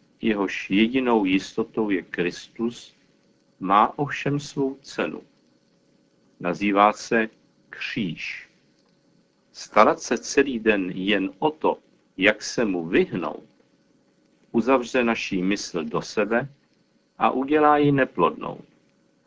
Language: Czech